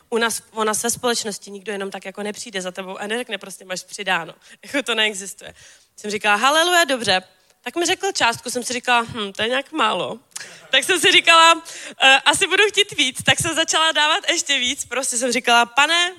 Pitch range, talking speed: 210-270 Hz, 210 wpm